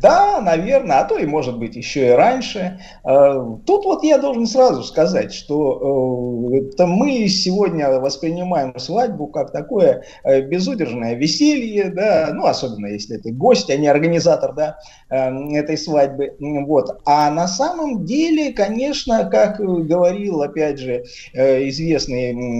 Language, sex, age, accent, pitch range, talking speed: Russian, male, 30-49, native, 125-190 Hz, 120 wpm